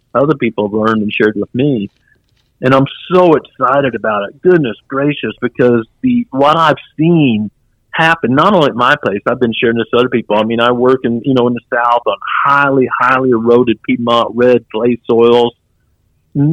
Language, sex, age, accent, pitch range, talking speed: English, male, 50-69, American, 115-145 Hz, 190 wpm